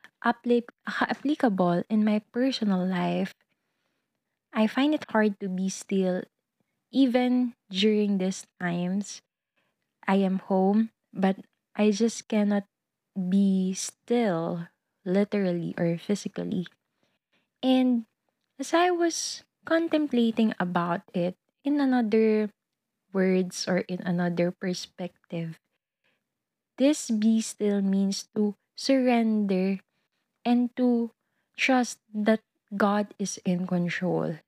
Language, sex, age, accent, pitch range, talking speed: Filipino, female, 20-39, native, 190-230 Hz, 95 wpm